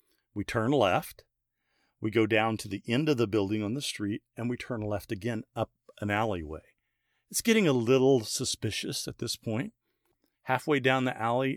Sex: male